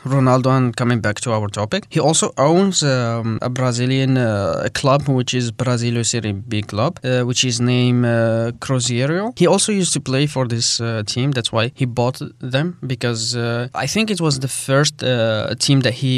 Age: 20-39